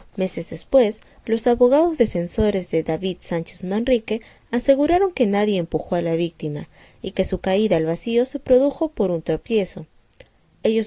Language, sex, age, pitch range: English, female, 20-39, 170-245 Hz